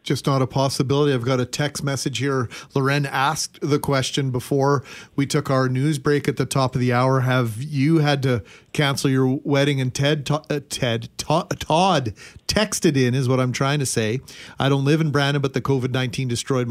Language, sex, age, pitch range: English, male, 40-59, 130-155 Hz